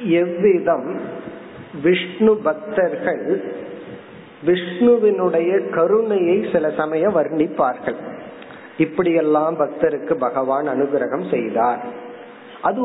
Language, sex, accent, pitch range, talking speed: Tamil, male, native, 150-210 Hz, 65 wpm